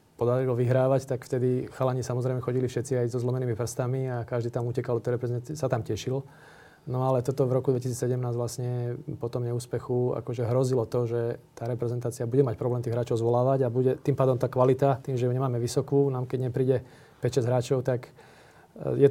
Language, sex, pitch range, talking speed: Slovak, male, 120-135 Hz, 185 wpm